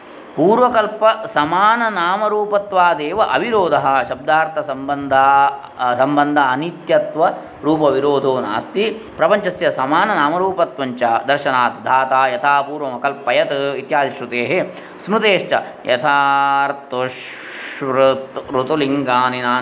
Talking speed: 50 wpm